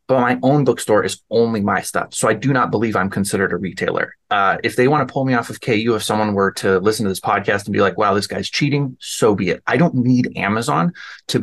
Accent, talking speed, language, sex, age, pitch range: American, 265 wpm, English, male, 30-49, 105-145 Hz